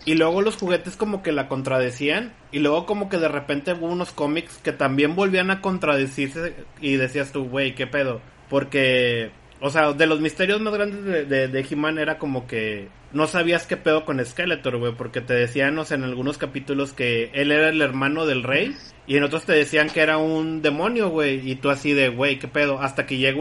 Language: Spanish